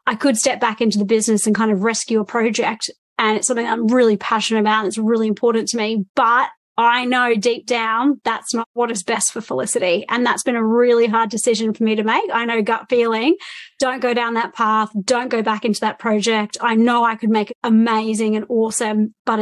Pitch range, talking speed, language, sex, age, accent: 220-240 Hz, 230 wpm, English, female, 30-49, Australian